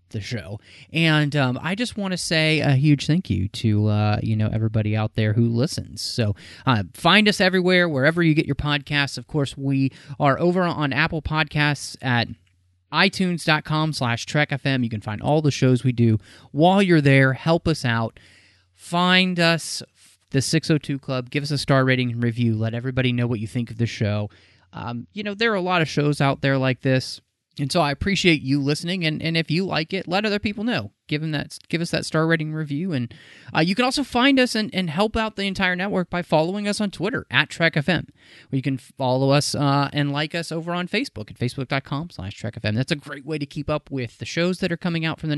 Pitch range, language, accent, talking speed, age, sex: 120-165 Hz, English, American, 225 wpm, 30-49, male